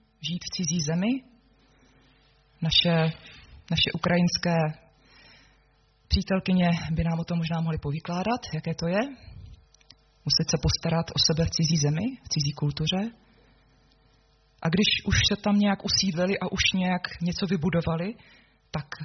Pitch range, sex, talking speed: 150-195 Hz, female, 130 wpm